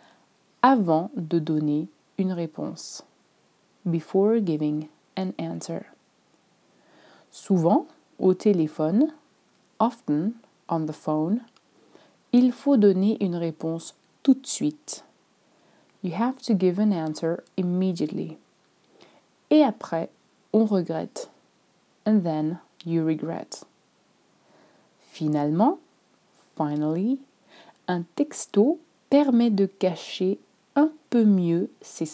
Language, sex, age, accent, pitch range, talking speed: French, female, 30-49, French, 165-235 Hz, 90 wpm